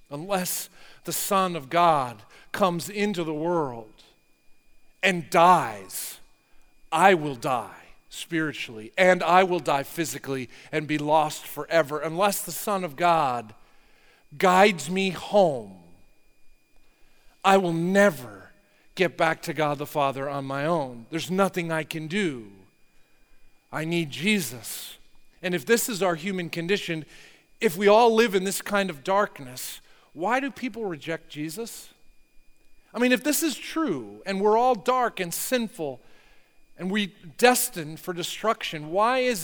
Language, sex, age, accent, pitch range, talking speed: English, male, 50-69, American, 155-215 Hz, 140 wpm